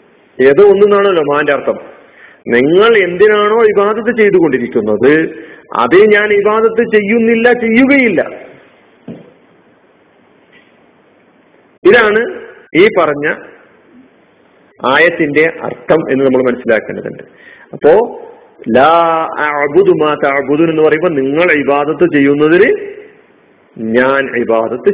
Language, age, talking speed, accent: Malayalam, 50-69, 70 wpm, native